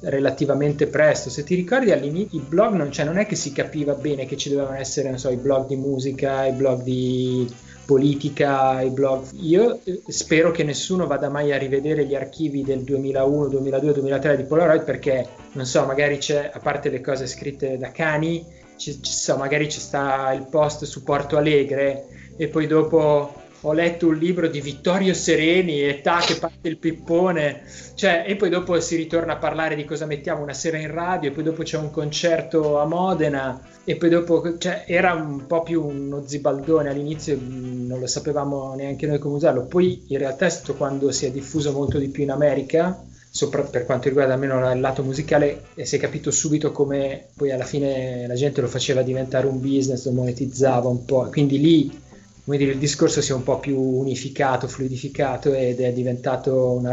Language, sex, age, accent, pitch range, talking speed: Italian, male, 20-39, native, 130-155 Hz, 200 wpm